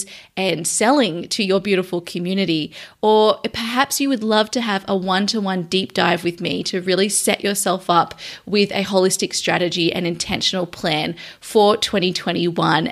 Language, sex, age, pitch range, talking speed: English, female, 20-39, 180-210 Hz, 155 wpm